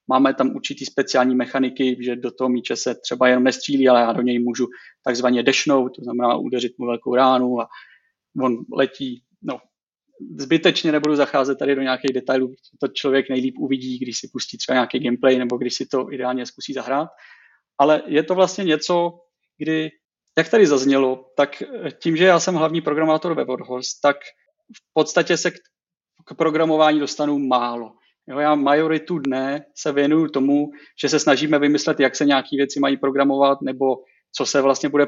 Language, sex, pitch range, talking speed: Czech, male, 130-150 Hz, 175 wpm